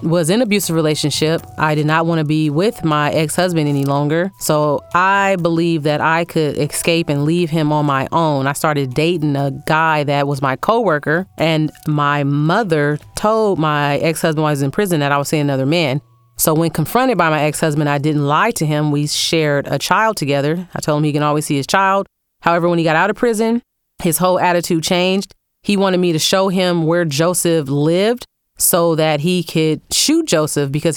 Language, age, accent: English, 30-49, American